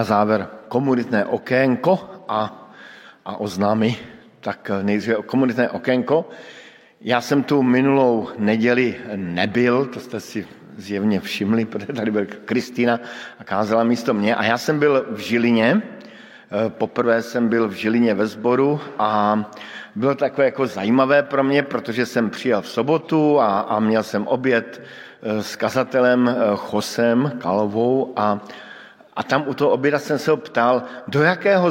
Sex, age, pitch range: male, 50-69, 110-135 Hz